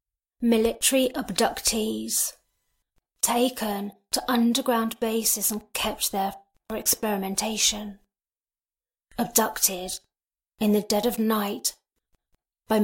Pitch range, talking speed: 205-230 Hz, 85 wpm